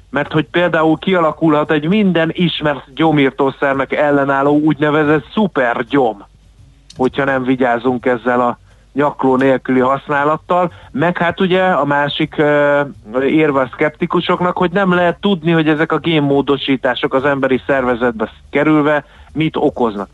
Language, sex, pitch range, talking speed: Hungarian, male, 125-160 Hz, 120 wpm